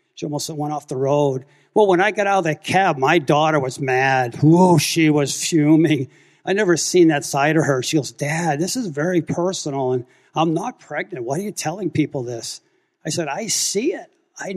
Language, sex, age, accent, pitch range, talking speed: English, male, 60-79, American, 145-185 Hz, 215 wpm